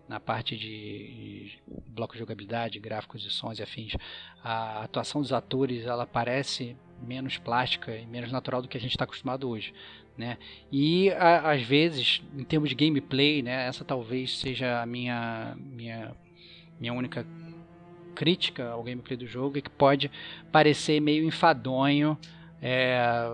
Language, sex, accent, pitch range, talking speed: Portuguese, male, Brazilian, 120-150 Hz, 150 wpm